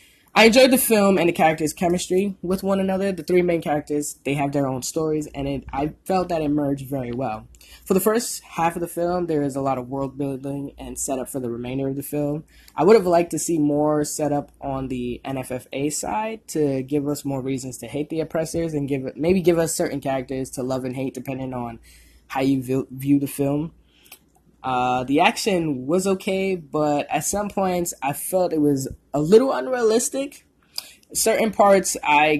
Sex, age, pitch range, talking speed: female, 10-29, 130-170 Hz, 205 wpm